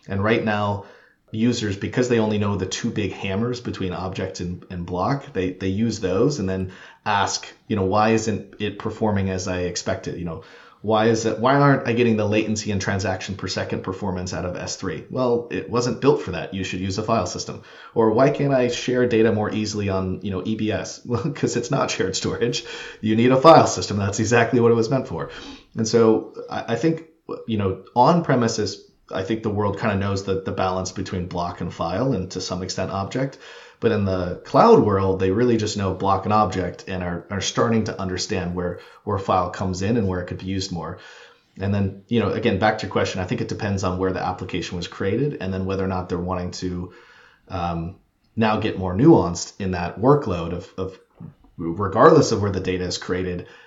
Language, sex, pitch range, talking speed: English, male, 95-115 Hz, 220 wpm